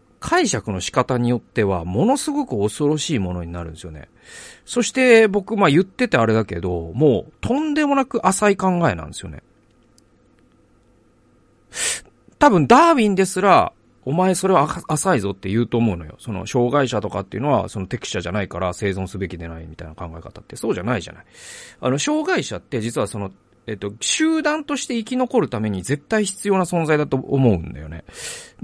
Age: 40-59